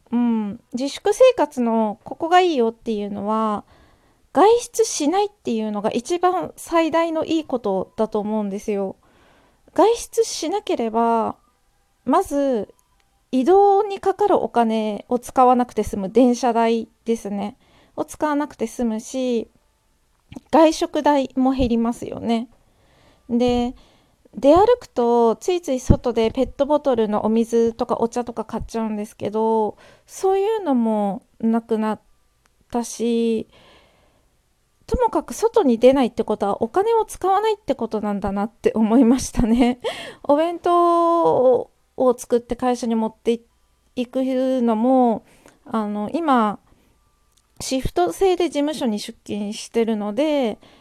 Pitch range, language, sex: 225-310 Hz, Japanese, female